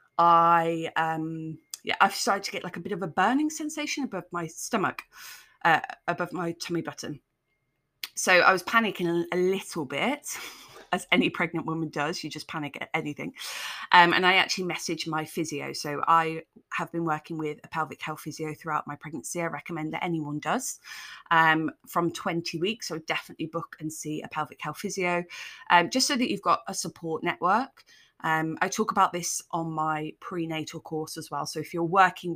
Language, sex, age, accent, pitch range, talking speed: English, female, 20-39, British, 155-180 Hz, 185 wpm